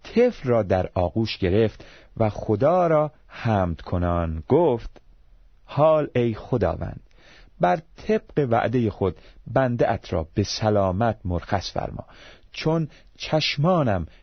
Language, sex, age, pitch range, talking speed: Persian, male, 40-59, 95-150 Hz, 105 wpm